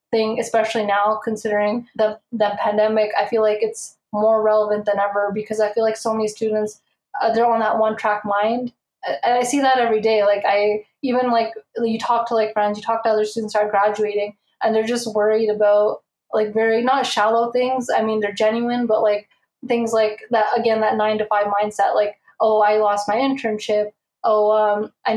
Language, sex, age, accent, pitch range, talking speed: English, female, 20-39, American, 215-230 Hz, 205 wpm